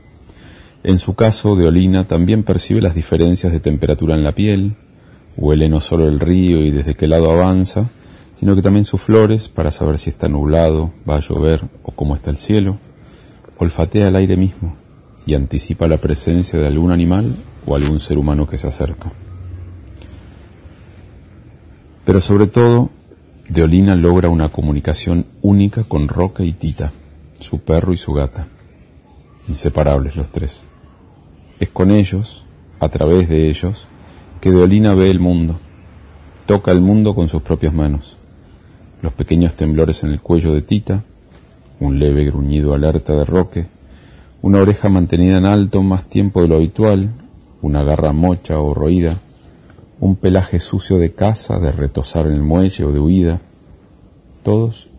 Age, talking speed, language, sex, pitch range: 40-59, 155 wpm, Spanish, male, 75-95 Hz